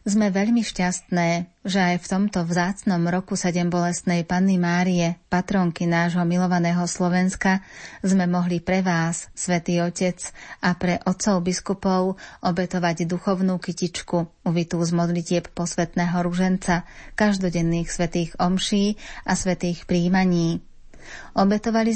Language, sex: Slovak, female